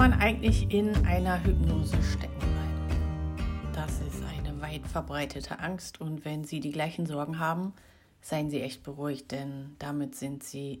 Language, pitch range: German, 145-190 Hz